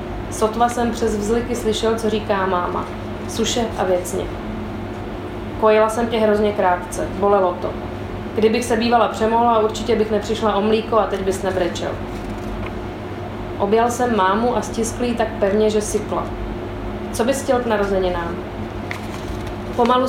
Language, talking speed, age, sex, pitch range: Czech, 135 wpm, 30-49, female, 190-230 Hz